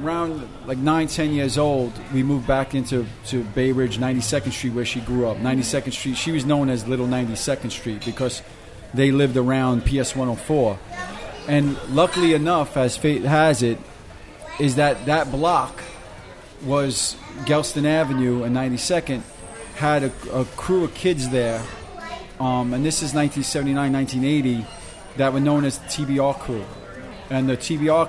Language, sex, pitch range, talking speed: English, male, 125-145 Hz, 155 wpm